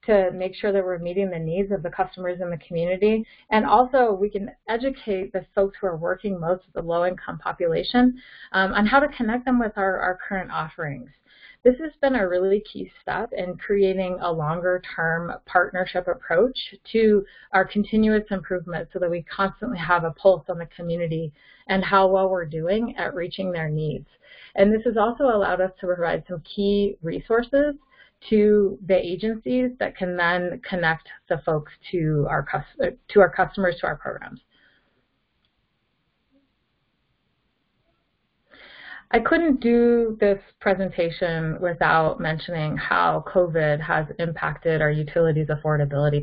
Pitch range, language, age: 170-210 Hz, English, 30-49